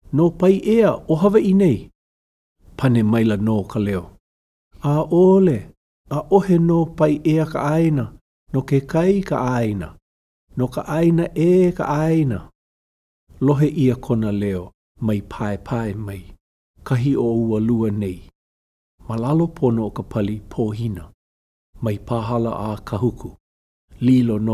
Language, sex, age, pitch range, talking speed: English, male, 50-69, 105-150 Hz, 140 wpm